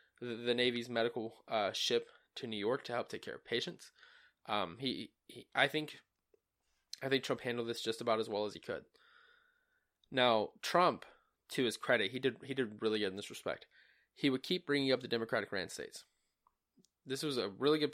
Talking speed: 195 wpm